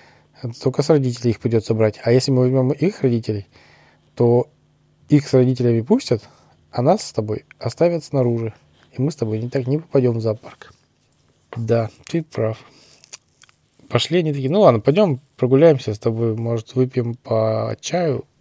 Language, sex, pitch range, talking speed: Russian, male, 110-140 Hz, 160 wpm